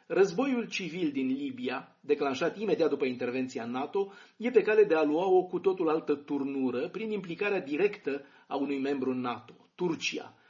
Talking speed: 160 wpm